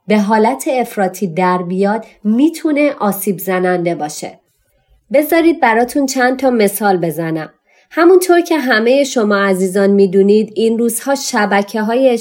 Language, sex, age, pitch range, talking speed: Persian, female, 30-49, 200-255 Hz, 125 wpm